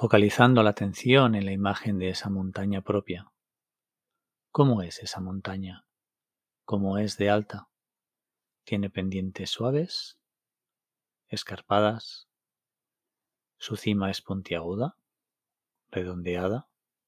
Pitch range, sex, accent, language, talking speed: 95-115 Hz, male, Spanish, Spanish, 95 wpm